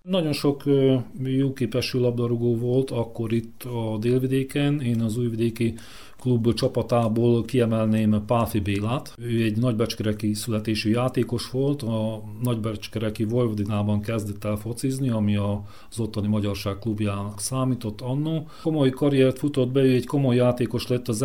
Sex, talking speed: male, 130 wpm